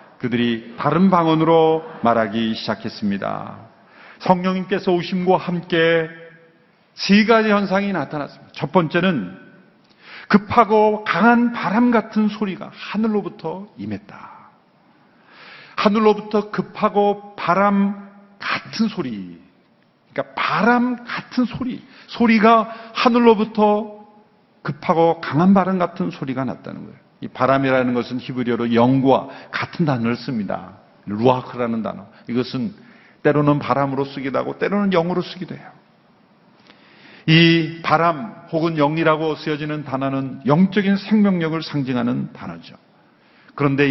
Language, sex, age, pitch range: Korean, male, 40-59, 140-210 Hz